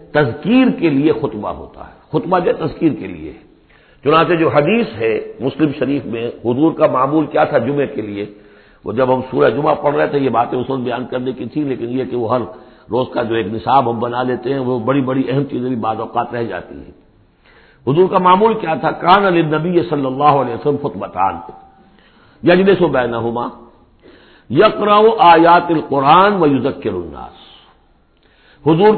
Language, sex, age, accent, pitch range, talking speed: English, male, 60-79, Indian, 120-175 Hz, 150 wpm